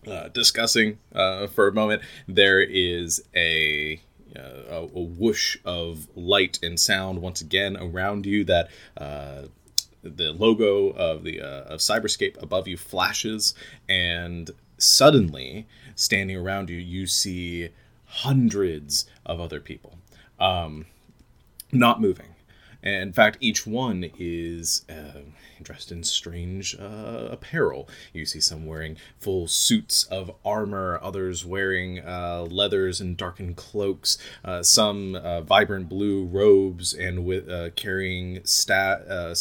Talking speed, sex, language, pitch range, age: 130 wpm, male, English, 85-100 Hz, 30-49